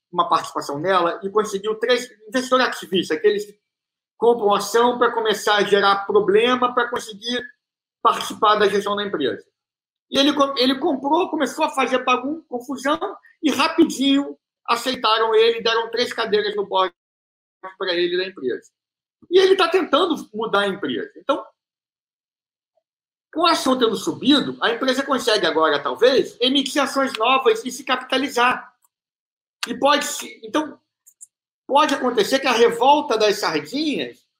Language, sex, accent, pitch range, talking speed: Portuguese, male, Brazilian, 205-290 Hz, 140 wpm